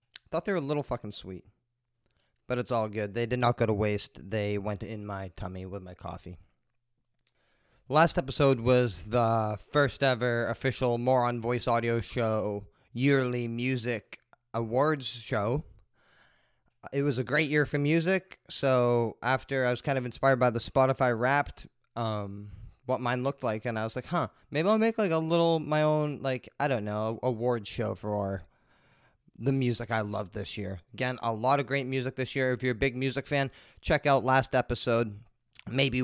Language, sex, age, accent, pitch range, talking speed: English, male, 20-39, American, 110-135 Hz, 180 wpm